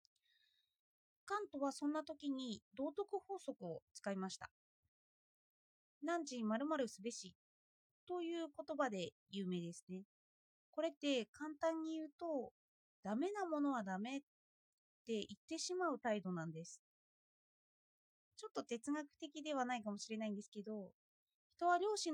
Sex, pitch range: female, 220-325 Hz